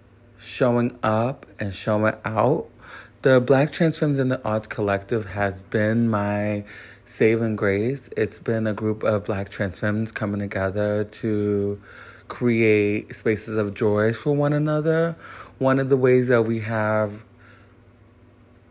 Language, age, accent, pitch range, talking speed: English, 30-49, American, 105-120 Hz, 140 wpm